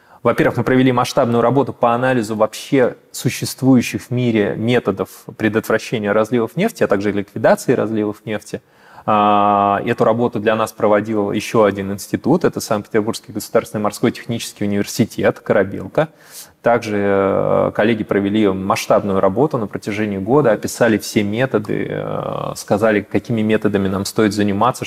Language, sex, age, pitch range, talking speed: Russian, male, 20-39, 105-120 Hz, 125 wpm